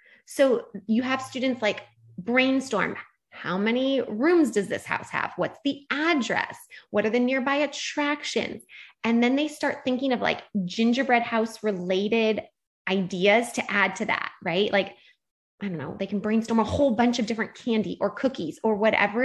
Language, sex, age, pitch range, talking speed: English, female, 20-39, 205-265 Hz, 170 wpm